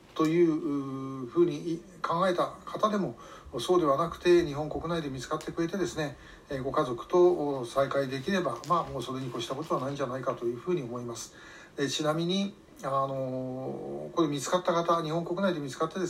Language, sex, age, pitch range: Japanese, male, 60-79, 130-170 Hz